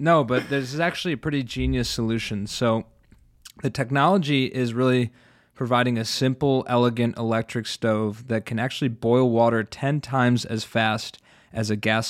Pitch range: 110-125 Hz